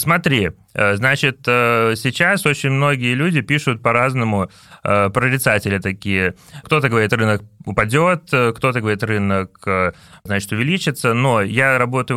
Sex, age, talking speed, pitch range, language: male, 30-49, 110 wpm, 105-140 Hz, Russian